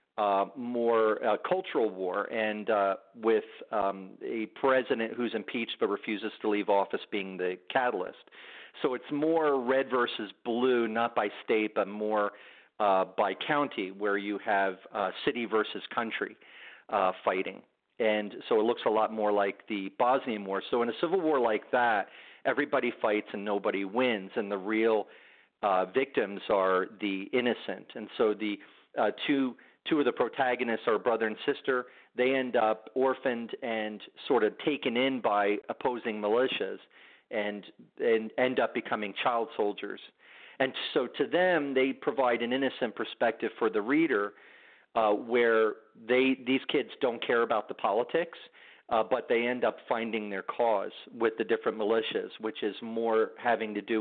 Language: English